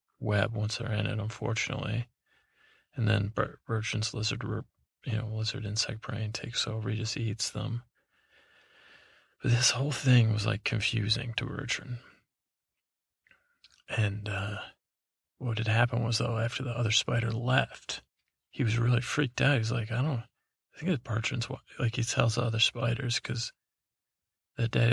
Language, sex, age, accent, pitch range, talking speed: English, male, 30-49, American, 110-125 Hz, 155 wpm